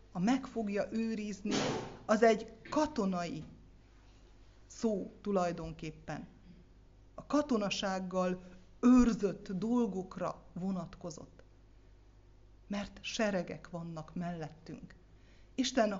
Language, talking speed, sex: Hungarian, 70 wpm, female